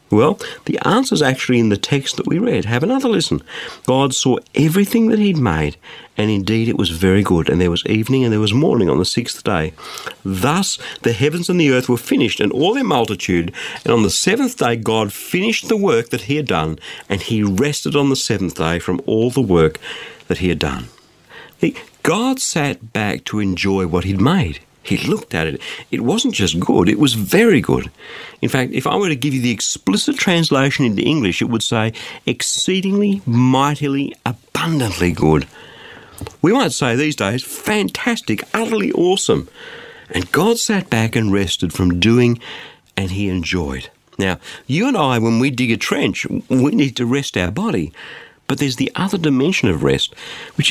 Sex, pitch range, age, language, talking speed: male, 100-150 Hz, 50-69, English, 190 wpm